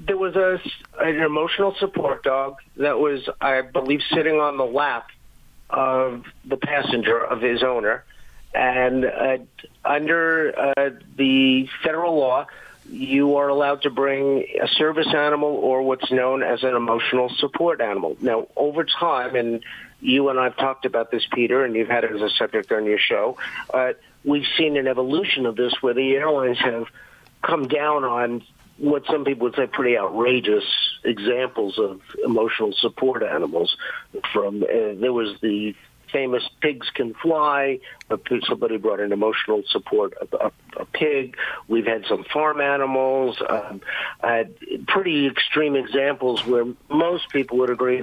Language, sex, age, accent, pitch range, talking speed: English, male, 50-69, American, 125-155 Hz, 155 wpm